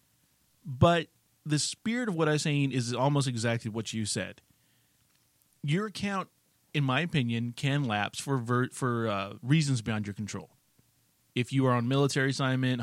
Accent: American